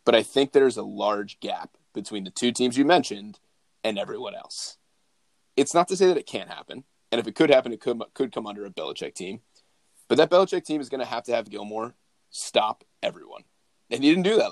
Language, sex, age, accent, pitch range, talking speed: English, male, 30-49, American, 130-220 Hz, 225 wpm